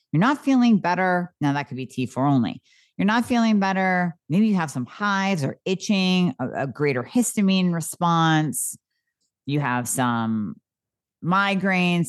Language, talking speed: English, 150 wpm